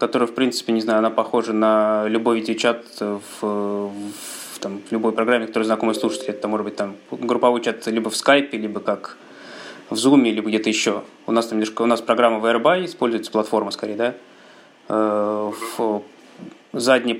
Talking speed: 170 wpm